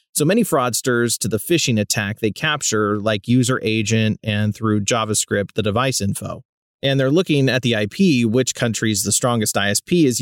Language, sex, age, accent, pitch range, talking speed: English, male, 30-49, American, 110-140 Hz, 175 wpm